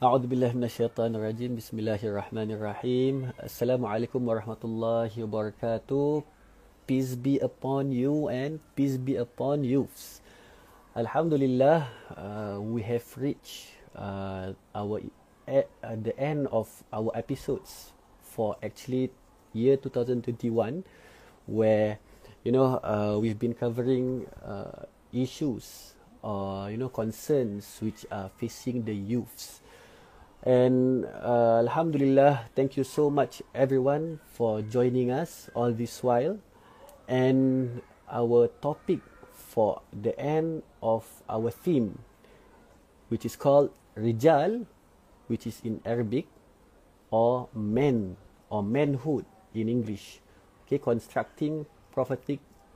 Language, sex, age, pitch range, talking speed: Malay, male, 30-49, 110-130 Hz, 110 wpm